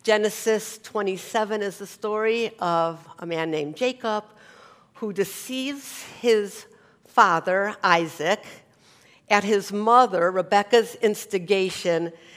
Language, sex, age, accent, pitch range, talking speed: English, female, 50-69, American, 180-225 Hz, 95 wpm